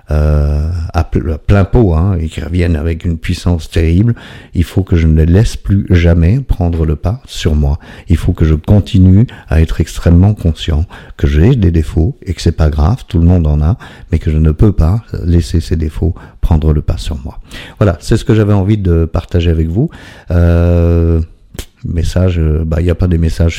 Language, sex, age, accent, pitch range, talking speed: French, male, 50-69, French, 80-95 Hz, 210 wpm